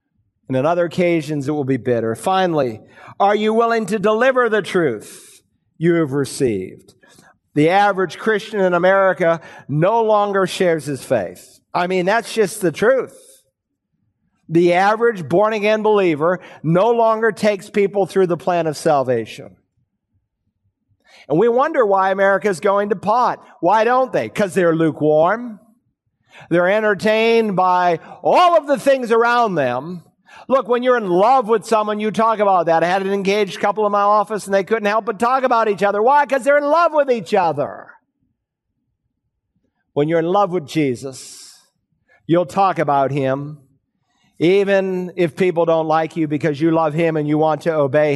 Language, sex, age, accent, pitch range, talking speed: English, male, 50-69, American, 165-220 Hz, 165 wpm